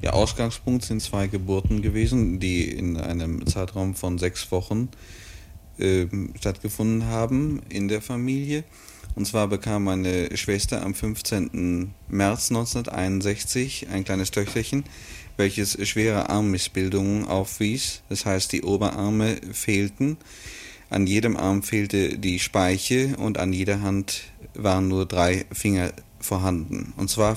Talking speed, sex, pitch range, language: 125 wpm, male, 95-110 Hz, German